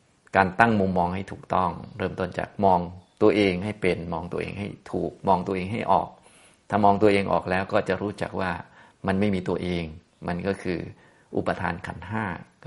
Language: Thai